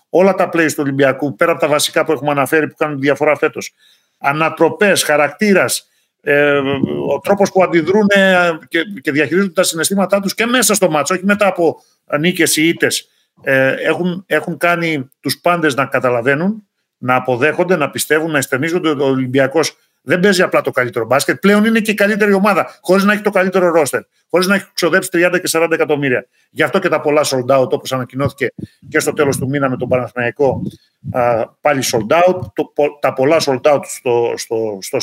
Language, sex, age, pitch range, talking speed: Greek, male, 50-69, 145-185 Hz, 180 wpm